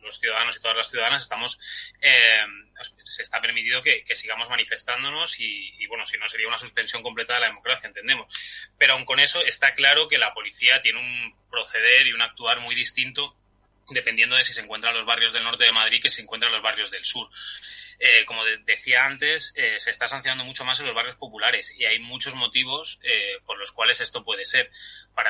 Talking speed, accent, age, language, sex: 220 wpm, Spanish, 20-39, Spanish, male